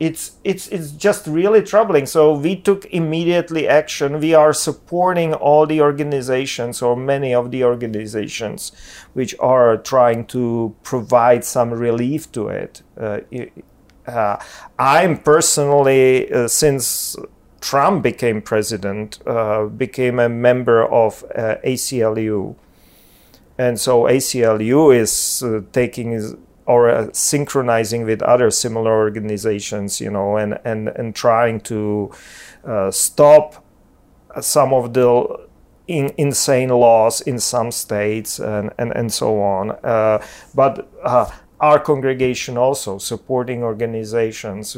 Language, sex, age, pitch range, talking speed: English, male, 40-59, 110-135 Hz, 125 wpm